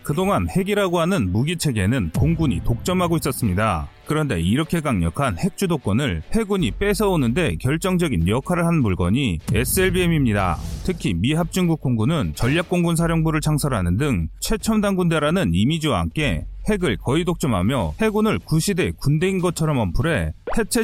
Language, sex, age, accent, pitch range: Korean, male, 30-49, native, 125-195 Hz